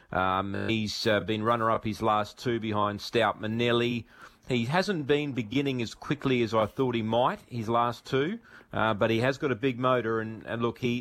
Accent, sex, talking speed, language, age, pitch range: Australian, male, 200 wpm, English, 40-59, 105-125 Hz